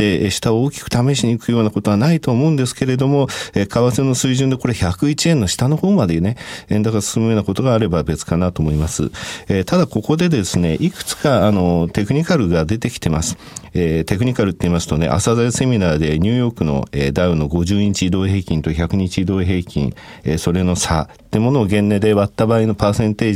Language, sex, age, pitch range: Japanese, male, 40-59, 90-125 Hz